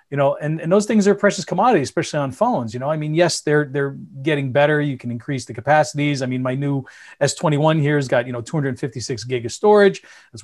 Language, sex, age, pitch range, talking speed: English, male, 40-59, 130-165 Hz, 235 wpm